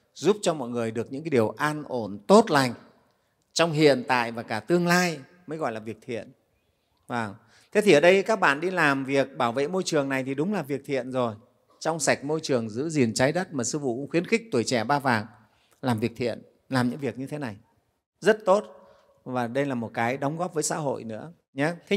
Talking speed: 230 wpm